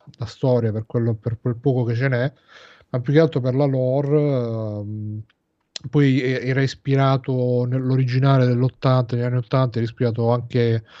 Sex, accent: male, native